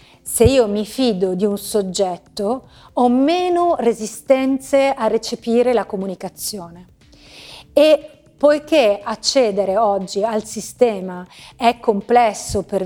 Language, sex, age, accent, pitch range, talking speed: Italian, female, 30-49, native, 205-260 Hz, 105 wpm